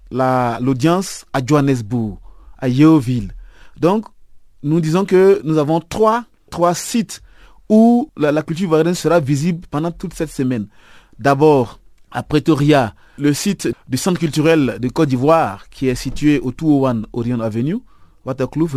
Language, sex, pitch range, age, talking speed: French, male, 135-180 Hz, 30-49, 145 wpm